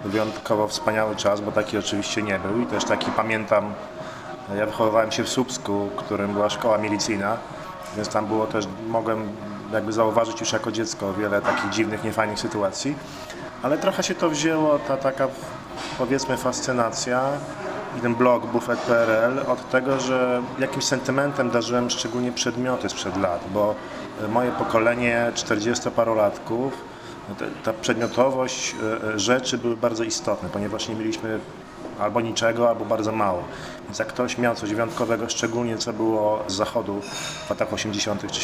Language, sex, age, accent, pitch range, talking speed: Polish, male, 40-59, native, 105-125 Hz, 150 wpm